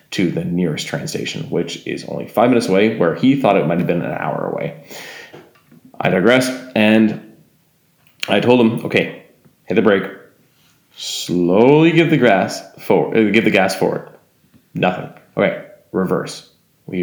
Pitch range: 90-145 Hz